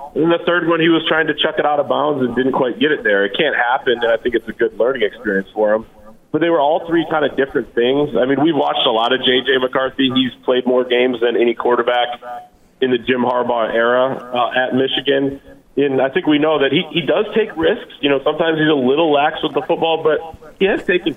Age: 30-49